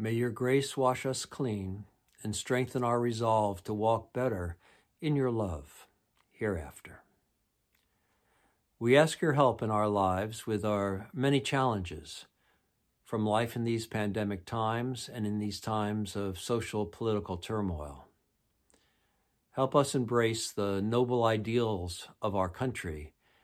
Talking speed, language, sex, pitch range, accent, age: 130 wpm, English, male, 95-120 Hz, American, 60-79